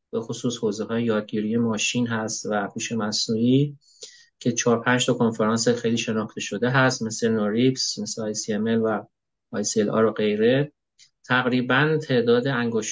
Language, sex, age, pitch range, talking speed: Persian, male, 30-49, 110-125 Hz, 140 wpm